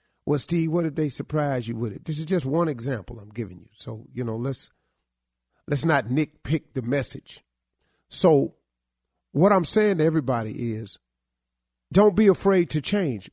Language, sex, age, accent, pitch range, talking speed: English, male, 40-59, American, 110-180 Hz, 170 wpm